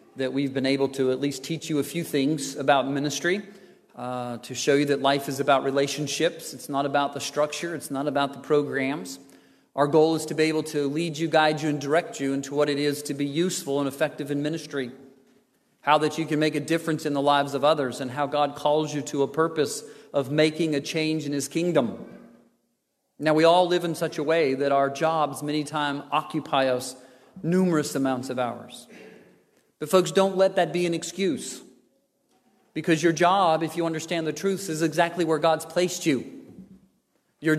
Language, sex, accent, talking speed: English, male, American, 205 wpm